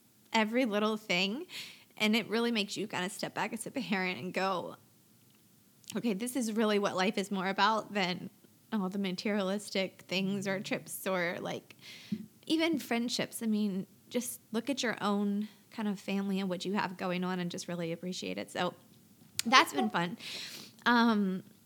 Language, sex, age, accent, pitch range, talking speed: English, female, 20-39, American, 185-215 Hz, 175 wpm